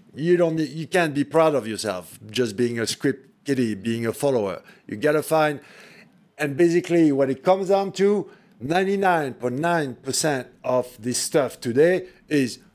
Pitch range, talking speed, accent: 145-195 Hz, 155 wpm, French